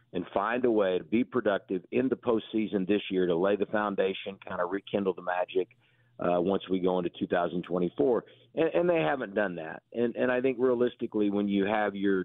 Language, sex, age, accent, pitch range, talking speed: English, male, 50-69, American, 95-115 Hz, 205 wpm